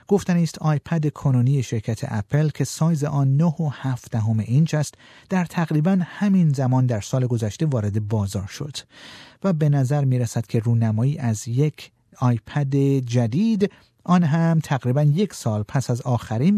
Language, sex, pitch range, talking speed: Persian, male, 120-165 Hz, 150 wpm